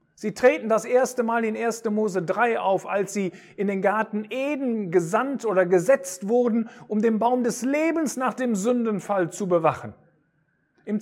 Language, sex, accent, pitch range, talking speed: German, male, German, 155-235 Hz, 170 wpm